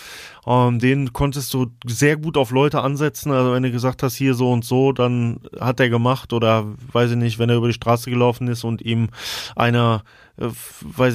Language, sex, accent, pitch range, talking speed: German, male, German, 115-130 Hz, 205 wpm